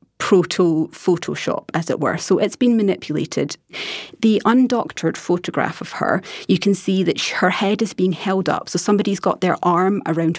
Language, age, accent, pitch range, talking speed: English, 30-49, British, 165-190 Hz, 170 wpm